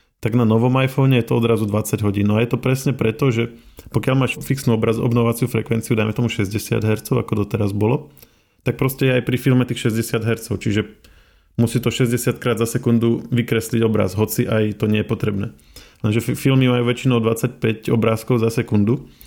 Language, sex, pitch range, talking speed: Slovak, male, 105-120 Hz, 185 wpm